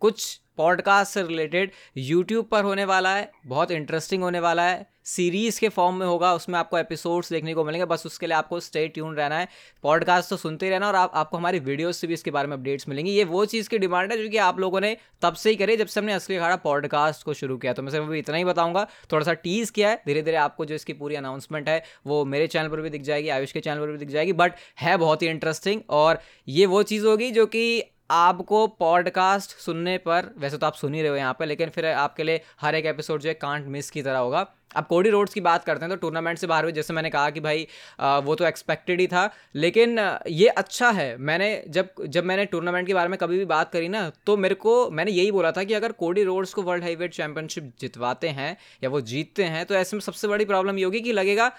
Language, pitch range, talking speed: Hindi, 155-195 Hz, 250 wpm